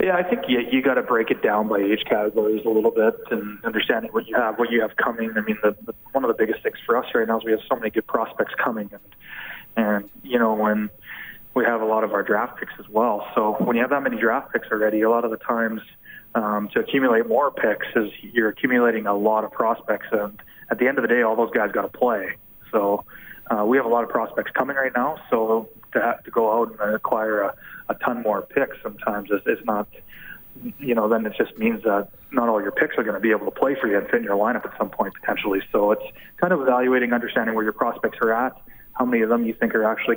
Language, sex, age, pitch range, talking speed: English, male, 20-39, 105-120 Hz, 260 wpm